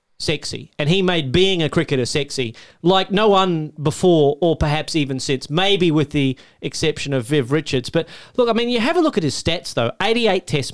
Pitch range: 130-175 Hz